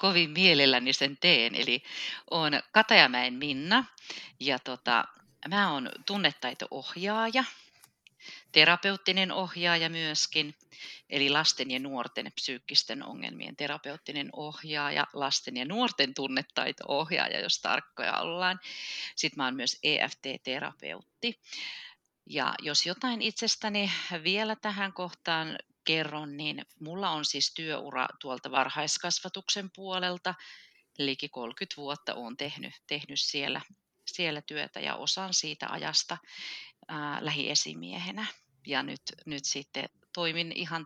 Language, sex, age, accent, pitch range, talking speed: Finnish, female, 40-59, native, 140-190 Hz, 105 wpm